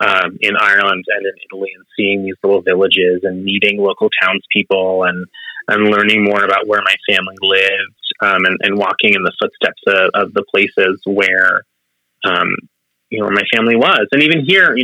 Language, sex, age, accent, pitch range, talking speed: English, male, 30-49, American, 95-115 Hz, 190 wpm